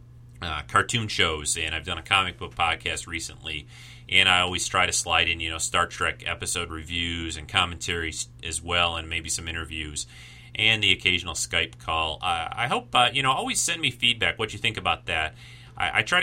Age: 30-49